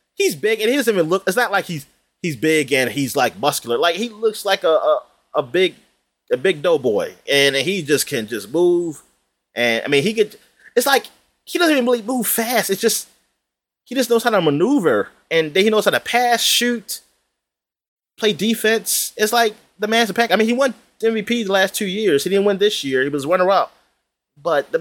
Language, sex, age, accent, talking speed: English, male, 20-39, American, 220 wpm